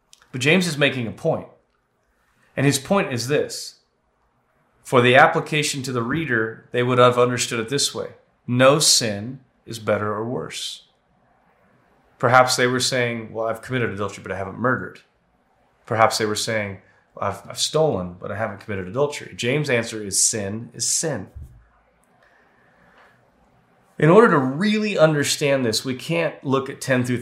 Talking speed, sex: 160 wpm, male